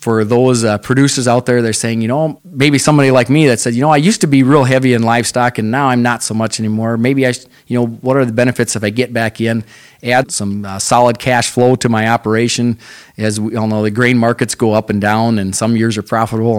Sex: male